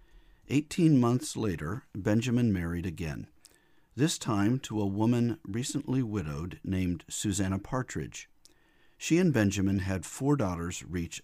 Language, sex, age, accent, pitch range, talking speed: English, male, 50-69, American, 90-130 Hz, 125 wpm